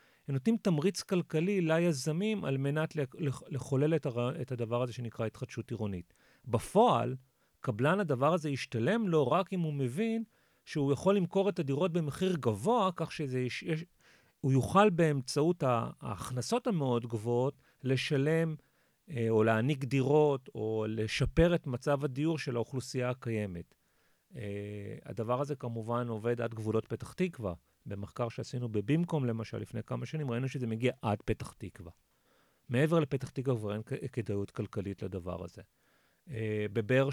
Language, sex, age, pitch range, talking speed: Hebrew, male, 40-59, 115-160 Hz, 135 wpm